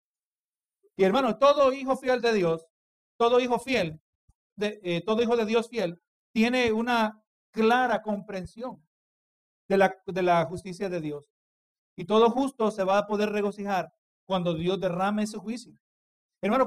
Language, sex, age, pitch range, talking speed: Spanish, male, 50-69, 190-230 Hz, 150 wpm